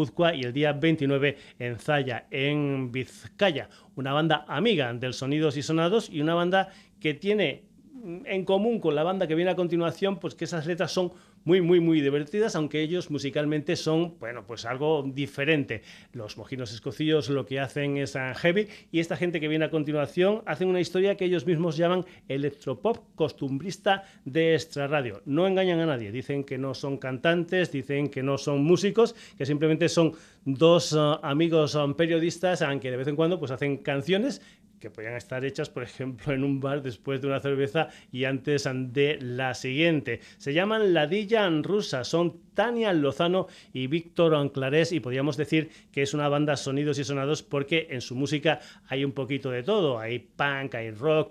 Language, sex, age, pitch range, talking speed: Spanish, male, 30-49, 135-170 Hz, 180 wpm